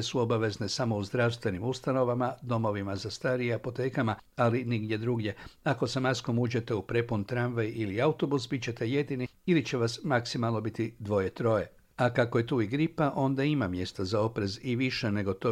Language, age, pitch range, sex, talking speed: Croatian, 60-79, 105-135 Hz, male, 180 wpm